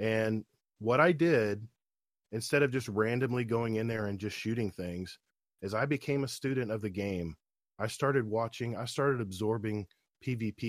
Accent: American